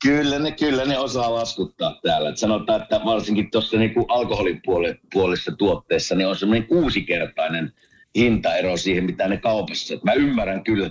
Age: 50-69